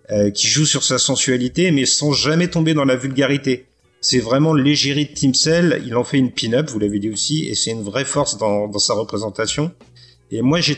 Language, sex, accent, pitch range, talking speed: French, male, French, 110-145 Hz, 225 wpm